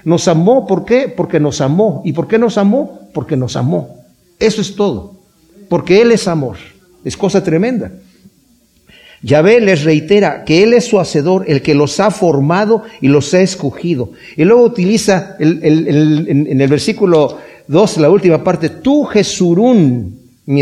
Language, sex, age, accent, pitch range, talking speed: Spanish, male, 50-69, Mexican, 155-220 Hz, 165 wpm